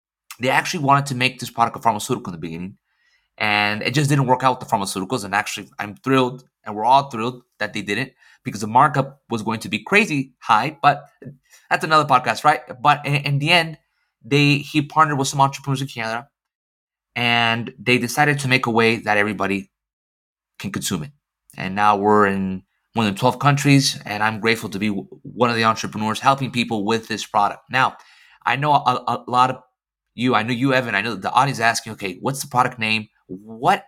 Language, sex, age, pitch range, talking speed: English, male, 20-39, 110-140 Hz, 210 wpm